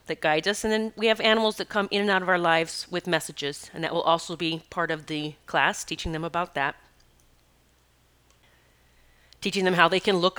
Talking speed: 210 wpm